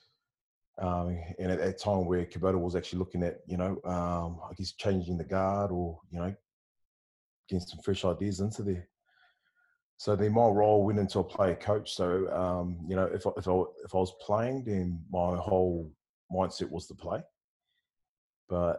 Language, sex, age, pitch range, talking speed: English, male, 20-39, 85-100 Hz, 190 wpm